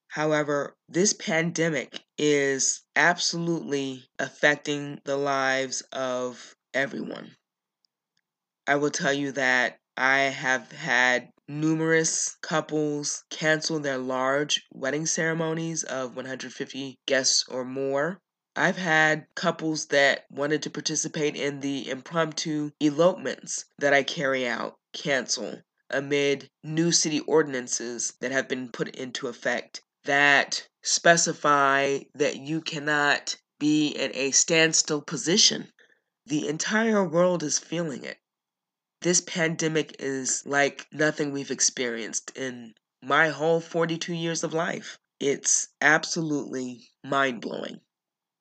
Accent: American